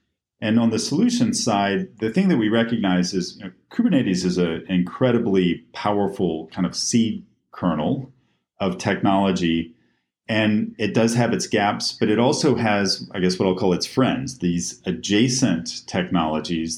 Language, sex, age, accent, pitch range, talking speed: English, male, 40-59, American, 90-110 Hz, 150 wpm